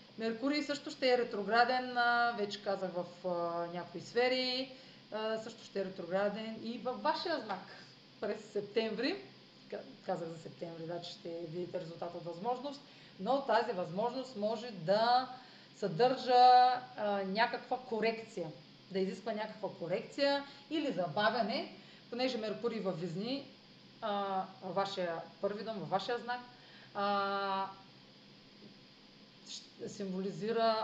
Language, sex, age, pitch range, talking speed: Bulgarian, female, 30-49, 195-250 Hz, 110 wpm